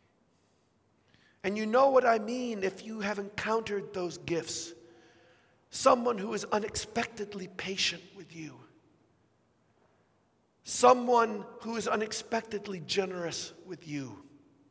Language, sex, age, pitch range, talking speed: English, male, 50-69, 160-225 Hz, 105 wpm